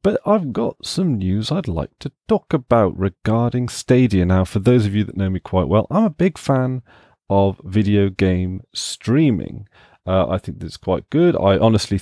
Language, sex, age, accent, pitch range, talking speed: English, male, 30-49, British, 90-115 Hz, 190 wpm